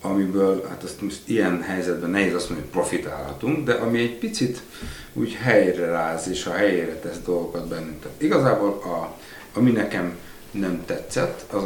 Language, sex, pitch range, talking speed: Hungarian, male, 85-100 Hz, 165 wpm